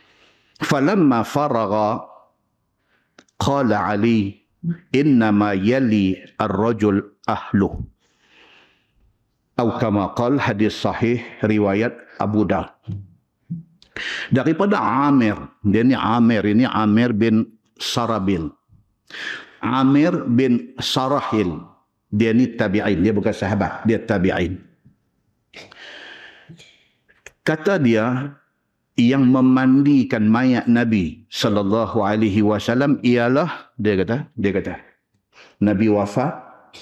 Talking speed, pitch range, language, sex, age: 85 wpm, 105-125 Hz, Malay, male, 50-69